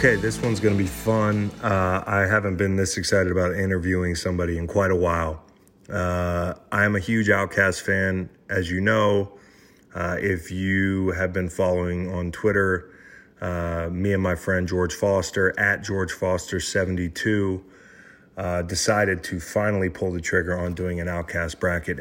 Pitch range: 85-95 Hz